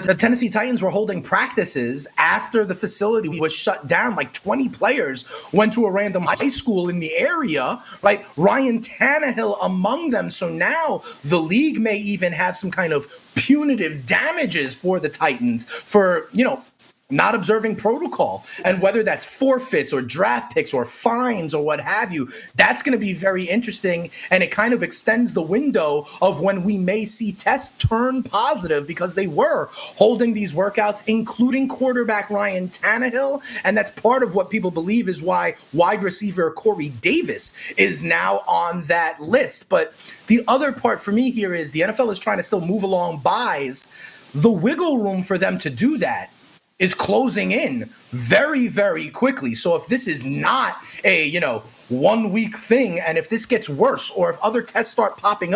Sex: male